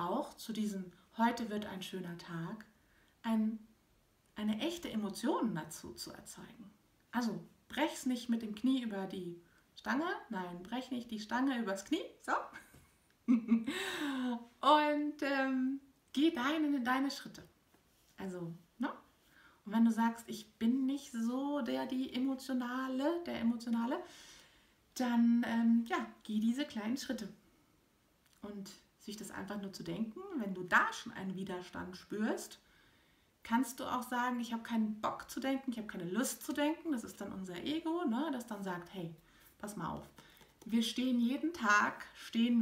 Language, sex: German, female